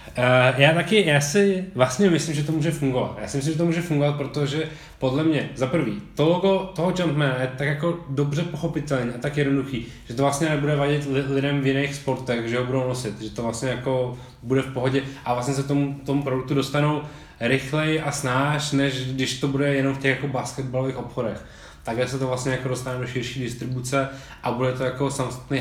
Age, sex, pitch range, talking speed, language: 20-39, male, 125-145 Hz, 210 wpm, Czech